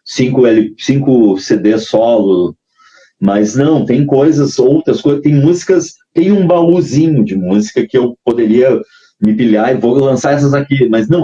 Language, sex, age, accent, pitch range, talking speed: Portuguese, male, 30-49, Brazilian, 110-160 Hz, 155 wpm